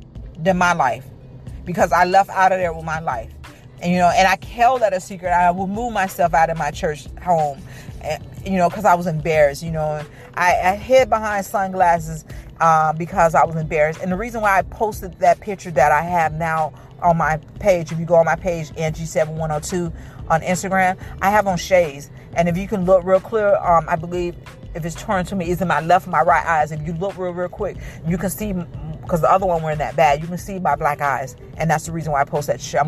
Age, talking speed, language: 40-59, 240 wpm, English